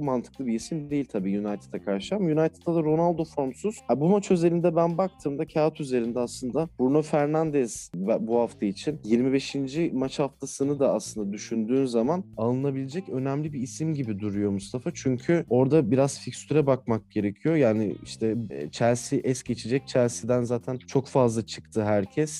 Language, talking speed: Turkish, 150 wpm